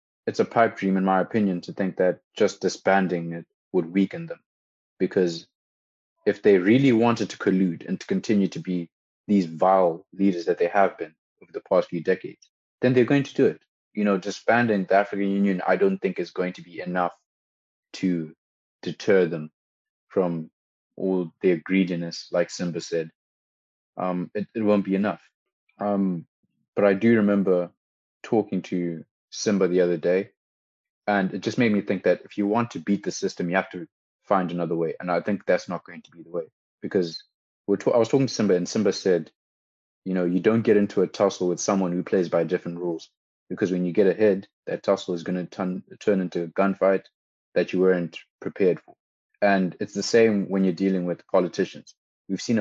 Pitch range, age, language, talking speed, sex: 85-100 Hz, 20-39, English, 195 wpm, male